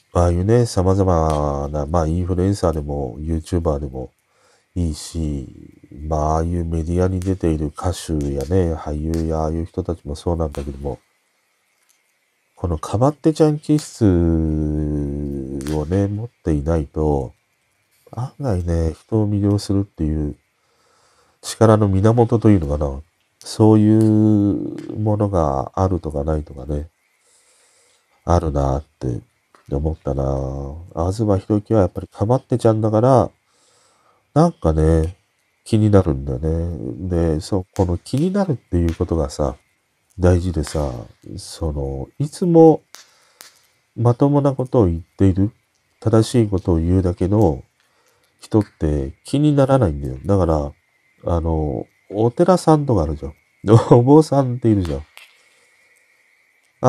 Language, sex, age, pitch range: Japanese, male, 40-59, 80-110 Hz